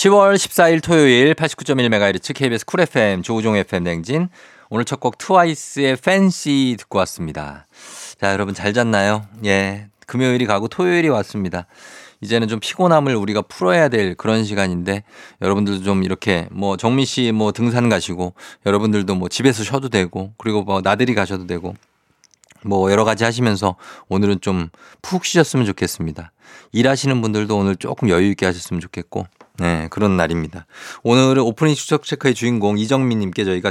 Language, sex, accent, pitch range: Korean, male, native, 95-135 Hz